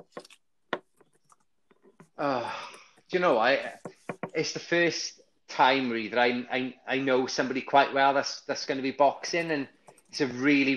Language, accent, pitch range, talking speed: English, British, 125-150 Hz, 155 wpm